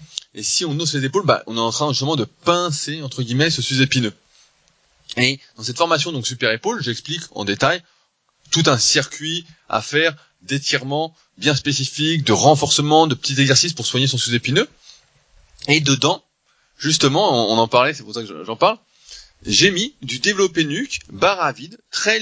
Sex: male